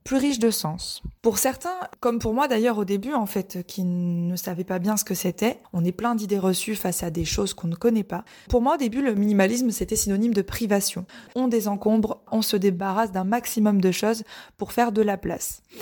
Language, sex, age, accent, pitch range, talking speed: French, female, 20-39, French, 185-240 Hz, 225 wpm